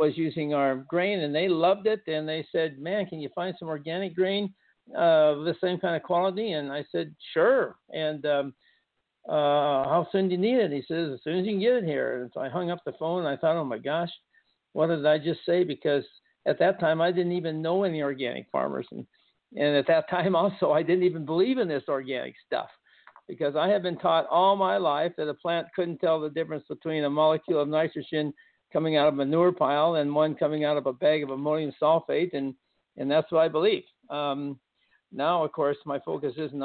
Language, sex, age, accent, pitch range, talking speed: English, male, 60-79, American, 150-180 Hz, 230 wpm